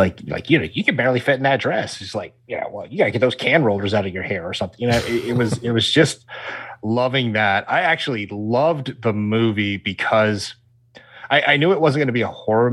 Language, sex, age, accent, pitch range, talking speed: English, male, 30-49, American, 105-125 Hz, 250 wpm